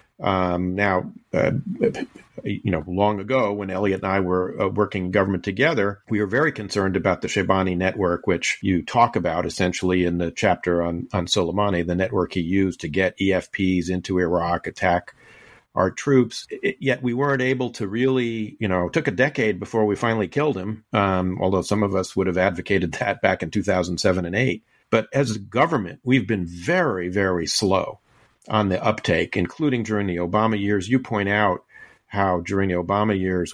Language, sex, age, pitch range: English, male, 50-69, 90-110 Hz